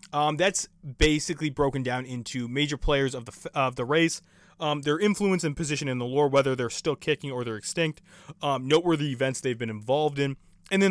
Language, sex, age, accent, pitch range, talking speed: English, male, 20-39, American, 125-155 Hz, 210 wpm